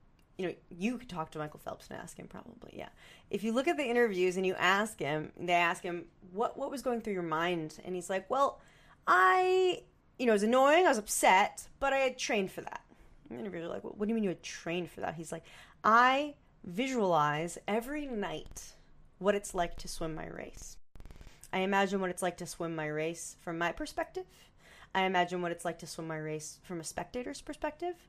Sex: female